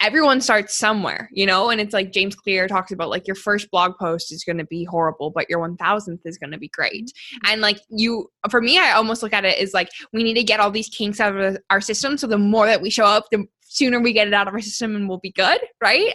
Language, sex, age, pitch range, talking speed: English, female, 10-29, 190-225 Hz, 275 wpm